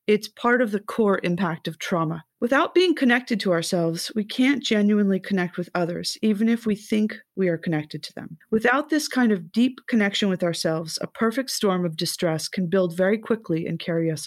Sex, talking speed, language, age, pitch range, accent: female, 200 wpm, English, 30-49, 175-220 Hz, American